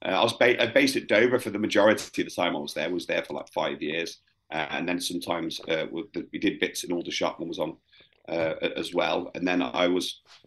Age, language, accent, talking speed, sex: 30-49, English, British, 265 wpm, male